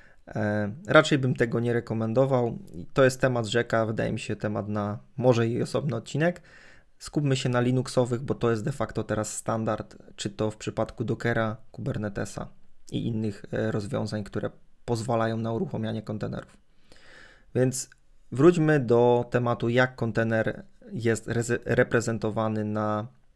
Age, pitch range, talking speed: 20-39, 115-135 Hz, 145 wpm